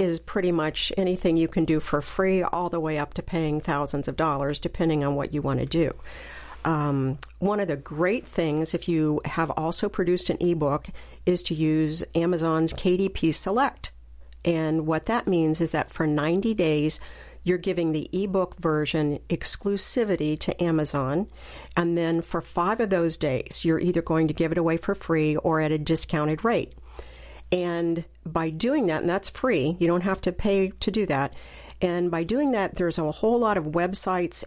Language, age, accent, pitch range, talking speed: English, 50-69, American, 160-185 Hz, 185 wpm